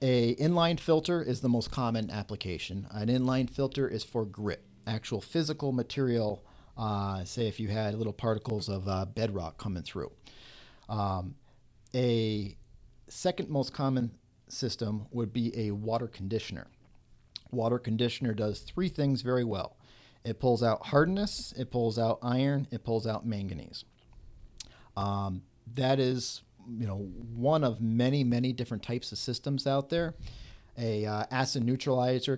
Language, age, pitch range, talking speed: English, 40-59, 110-130 Hz, 145 wpm